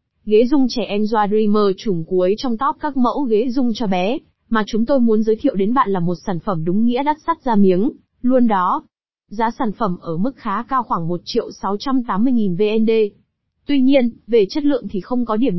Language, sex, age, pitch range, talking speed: Vietnamese, female, 20-39, 200-245 Hz, 215 wpm